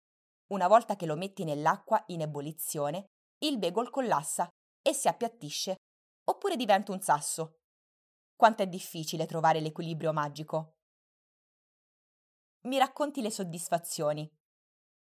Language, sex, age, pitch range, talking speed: Italian, female, 20-39, 165-230 Hz, 110 wpm